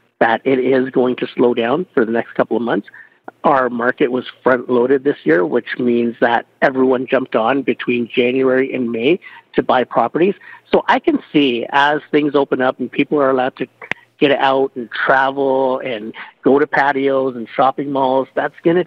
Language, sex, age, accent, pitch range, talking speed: English, male, 50-69, American, 125-145 Hz, 190 wpm